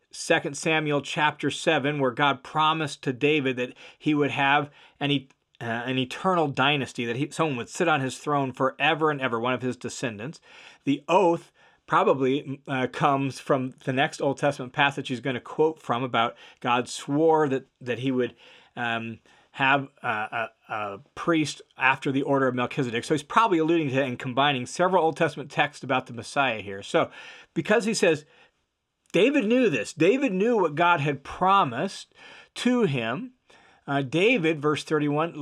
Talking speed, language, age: 175 wpm, English, 40-59